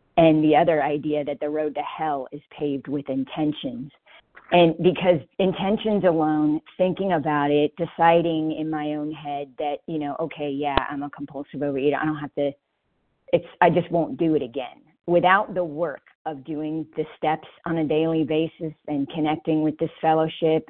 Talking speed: 175 wpm